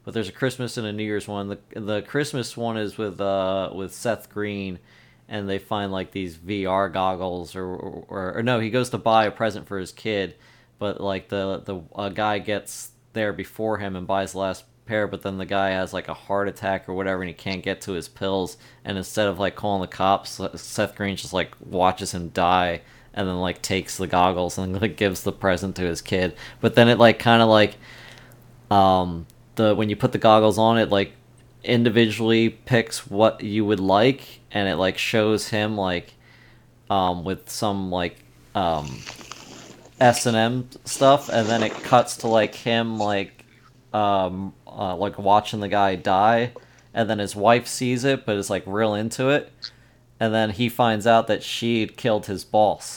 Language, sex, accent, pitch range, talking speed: English, male, American, 95-115 Hz, 200 wpm